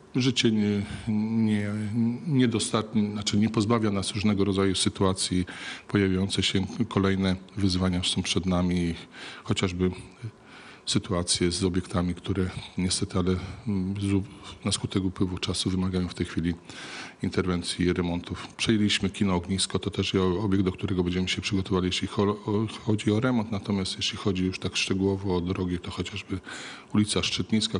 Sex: male